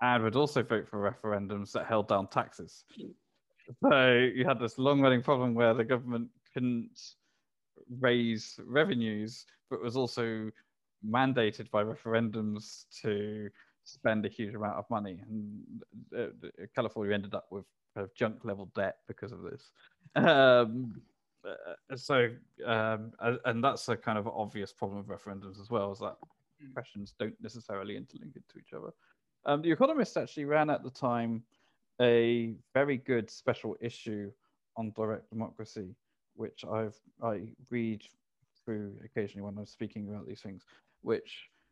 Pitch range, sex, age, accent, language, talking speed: 105-125 Hz, male, 20-39, British, English, 145 wpm